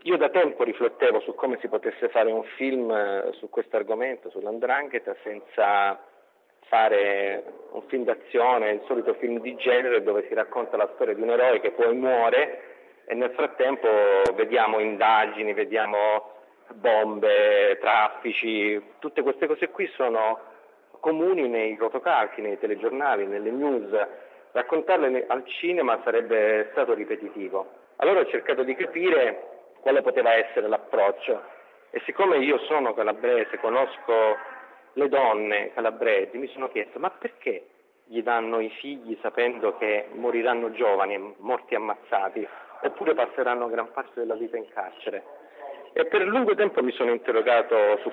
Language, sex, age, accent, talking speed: Italian, male, 40-59, native, 140 wpm